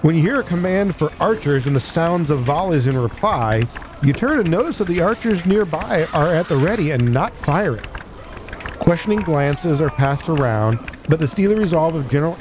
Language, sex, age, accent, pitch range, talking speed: English, male, 50-69, American, 125-165 Hz, 195 wpm